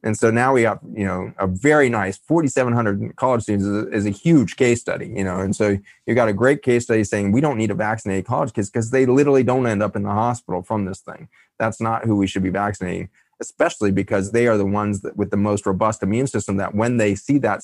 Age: 30-49